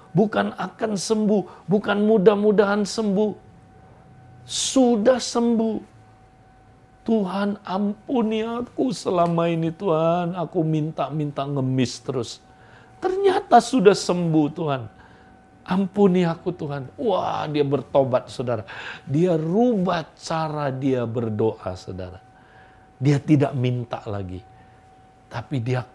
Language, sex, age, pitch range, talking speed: Indonesian, male, 50-69, 120-190 Hz, 95 wpm